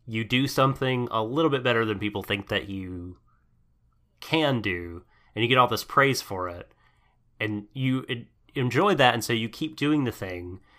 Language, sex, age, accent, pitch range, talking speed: English, male, 30-49, American, 100-125 Hz, 185 wpm